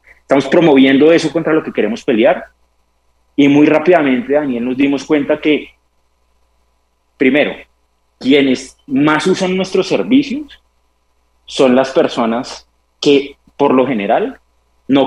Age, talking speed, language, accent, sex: 30-49, 120 wpm, Spanish, Colombian, male